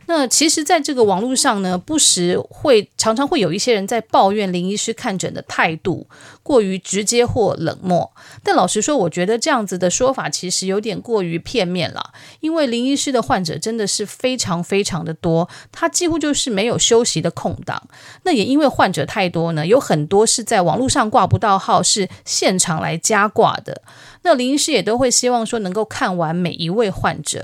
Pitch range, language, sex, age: 175-240 Hz, Chinese, female, 30-49